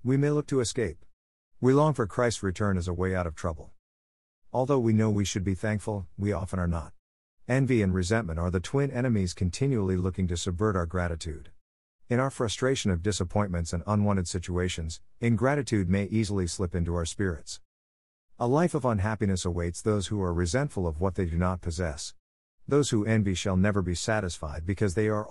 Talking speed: 190 wpm